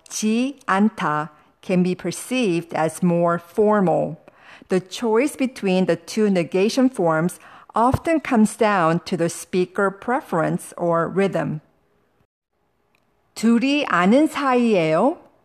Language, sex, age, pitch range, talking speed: English, female, 50-69, 175-255 Hz, 105 wpm